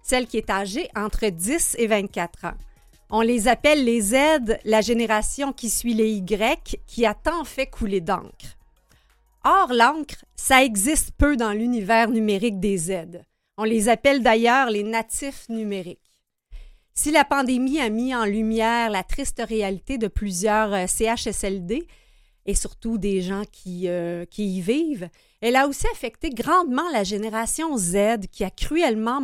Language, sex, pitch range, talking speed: French, female, 205-270 Hz, 155 wpm